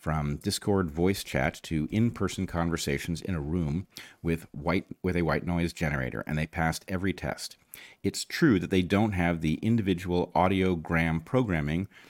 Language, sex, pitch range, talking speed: English, male, 80-95 Hz, 160 wpm